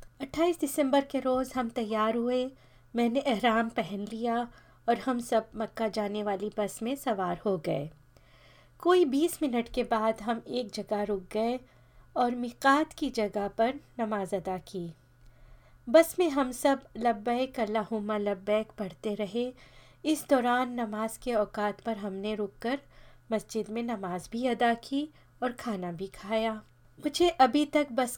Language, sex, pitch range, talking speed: Hindi, female, 215-255 Hz, 150 wpm